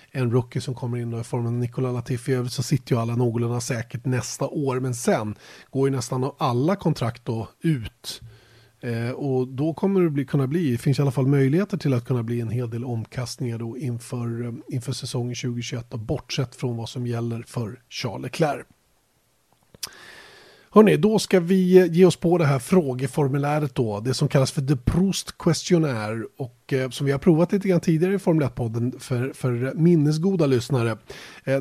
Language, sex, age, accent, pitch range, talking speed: Swedish, male, 30-49, native, 125-155 Hz, 180 wpm